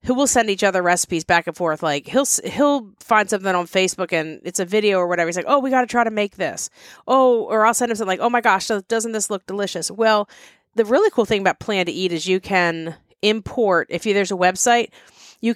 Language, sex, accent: English, female, American